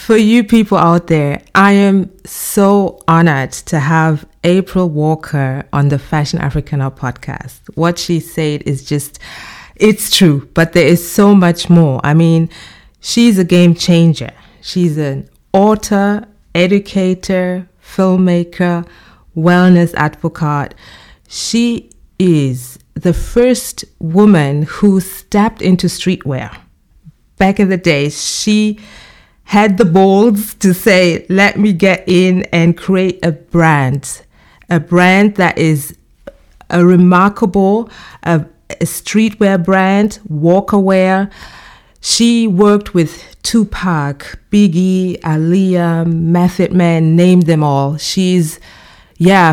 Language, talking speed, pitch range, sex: English, 115 wpm, 160-195 Hz, female